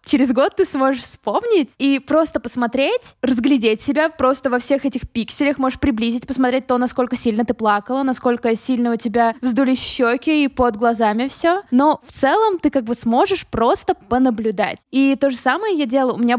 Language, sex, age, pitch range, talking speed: Russian, female, 20-39, 230-280 Hz, 185 wpm